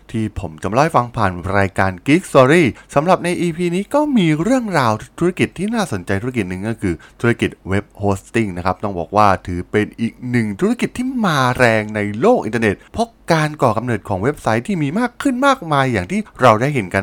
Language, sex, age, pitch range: Thai, male, 20-39, 105-165 Hz